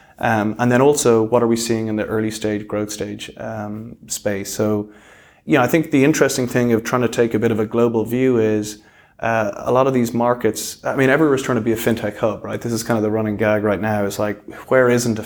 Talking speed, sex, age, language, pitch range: 255 wpm, male, 30-49, English, 105-120 Hz